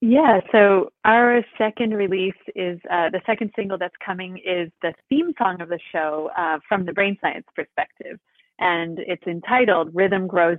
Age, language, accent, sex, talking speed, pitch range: 30-49, English, American, female, 170 wpm, 170-210 Hz